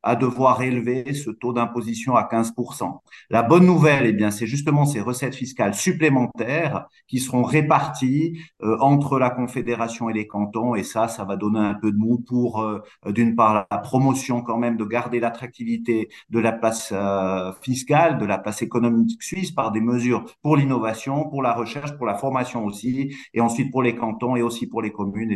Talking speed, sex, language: 190 wpm, male, French